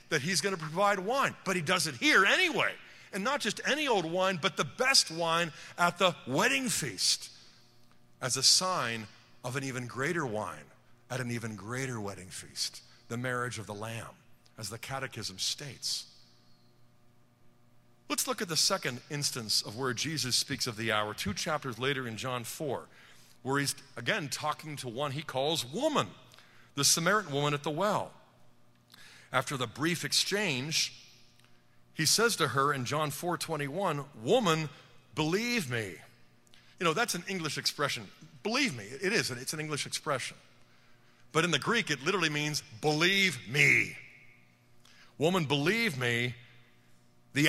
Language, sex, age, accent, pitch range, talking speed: English, male, 50-69, American, 120-165 Hz, 155 wpm